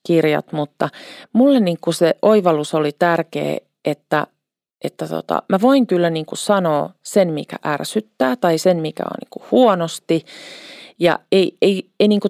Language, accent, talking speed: Finnish, native, 150 wpm